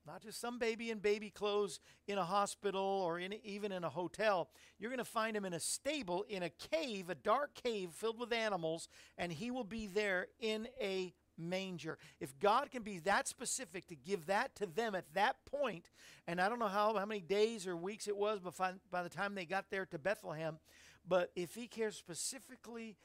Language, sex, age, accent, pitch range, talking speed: English, male, 50-69, American, 180-225 Hz, 205 wpm